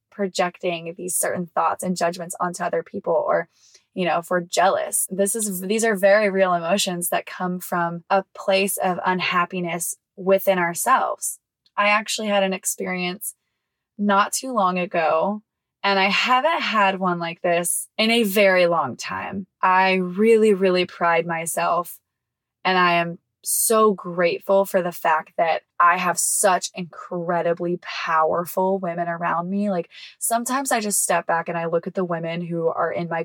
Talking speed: 160 wpm